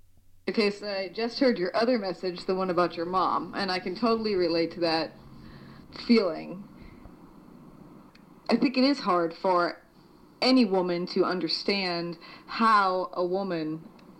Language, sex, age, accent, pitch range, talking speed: English, female, 40-59, American, 175-230 Hz, 145 wpm